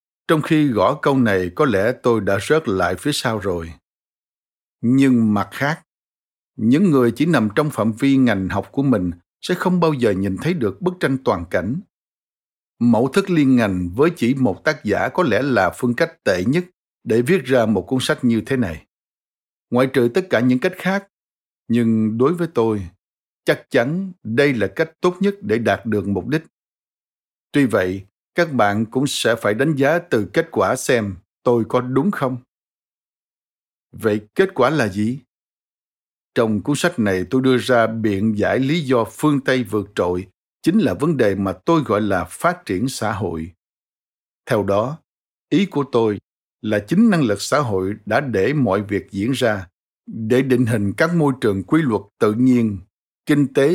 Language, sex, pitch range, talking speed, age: Vietnamese, male, 100-145 Hz, 185 wpm, 60-79